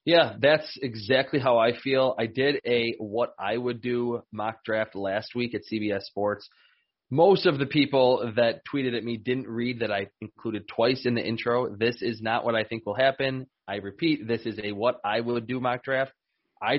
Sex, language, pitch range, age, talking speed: male, English, 115-135 Hz, 20-39, 180 wpm